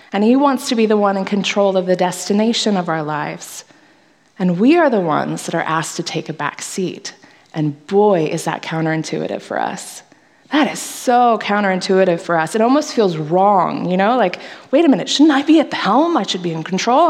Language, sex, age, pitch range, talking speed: English, female, 20-39, 185-270 Hz, 220 wpm